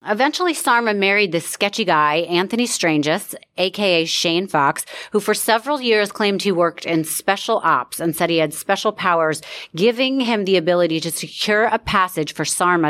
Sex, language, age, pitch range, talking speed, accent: female, English, 30-49, 160-200 Hz, 170 wpm, American